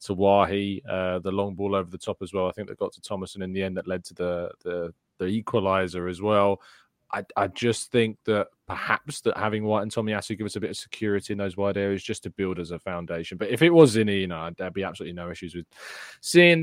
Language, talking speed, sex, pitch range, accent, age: English, 255 wpm, male, 95-115 Hz, British, 20-39